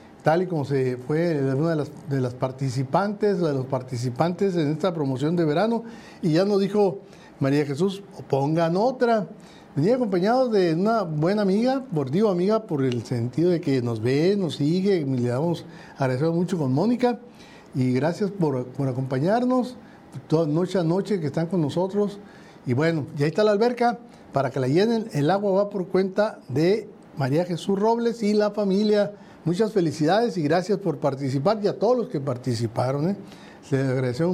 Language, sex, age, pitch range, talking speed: Spanish, male, 60-79, 145-205 Hz, 180 wpm